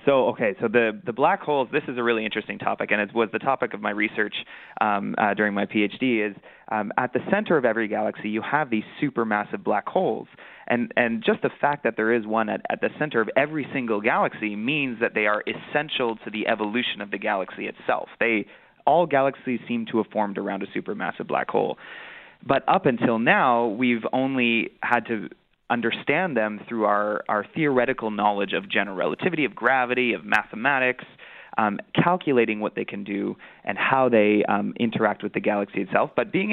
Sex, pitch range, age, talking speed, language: male, 110-130 Hz, 20-39, 195 wpm, English